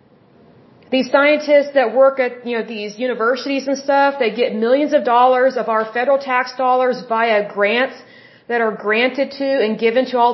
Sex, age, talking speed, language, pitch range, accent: female, 40-59, 180 wpm, English, 230-280 Hz, American